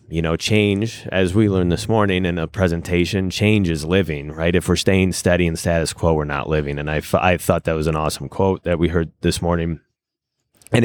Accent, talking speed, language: American, 215 wpm, English